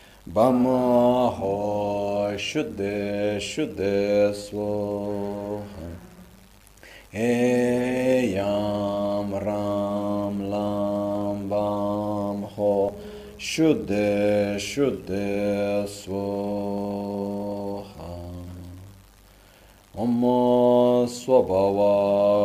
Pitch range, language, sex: 100-105 Hz, Italian, male